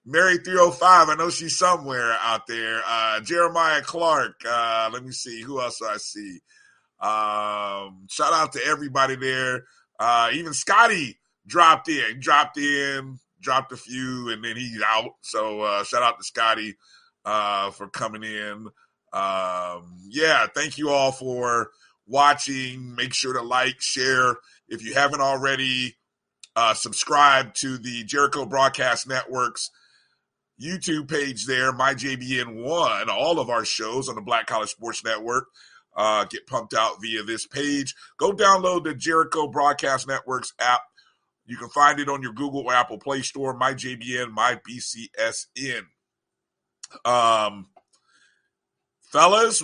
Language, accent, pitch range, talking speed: English, American, 115-145 Hz, 140 wpm